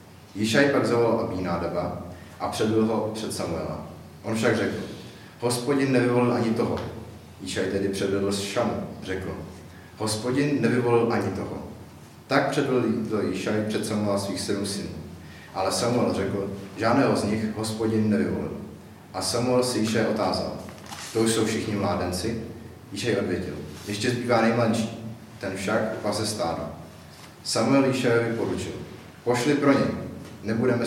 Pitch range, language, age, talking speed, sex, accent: 90-115 Hz, Czech, 40-59, 135 wpm, male, native